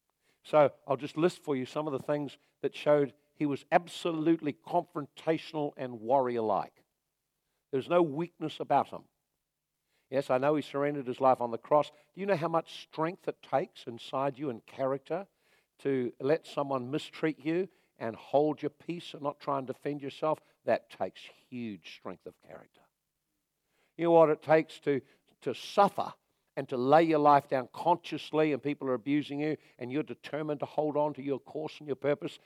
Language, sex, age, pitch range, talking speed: English, male, 50-69, 135-160 Hz, 185 wpm